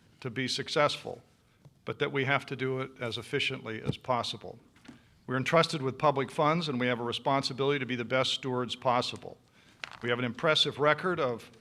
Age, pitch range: 50-69, 125-150 Hz